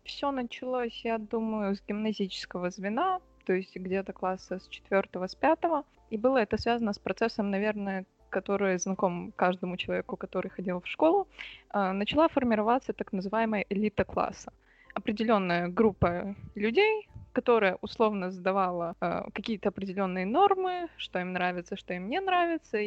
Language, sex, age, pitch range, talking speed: Russian, female, 20-39, 190-230 Hz, 135 wpm